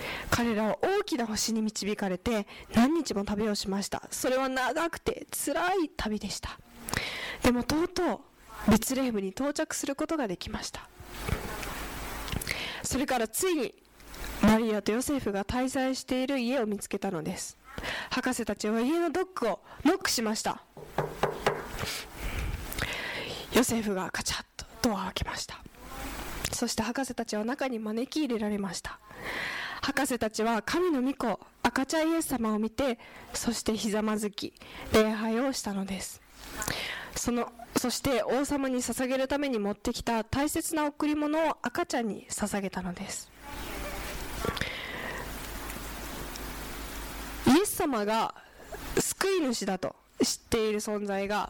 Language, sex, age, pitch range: Japanese, female, 20-39, 210-280 Hz